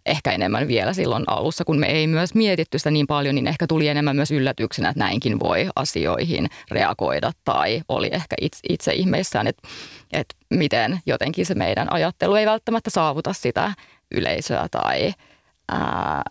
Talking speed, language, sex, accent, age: 160 wpm, Finnish, female, native, 30-49